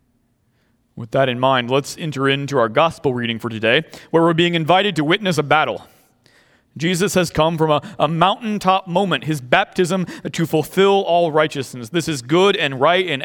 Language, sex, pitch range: English, male, 120-165 Hz